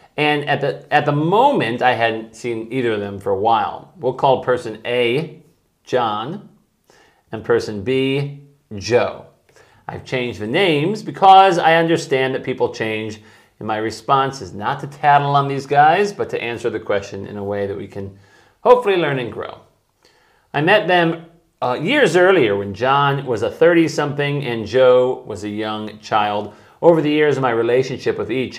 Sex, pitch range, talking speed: male, 110-155 Hz, 175 wpm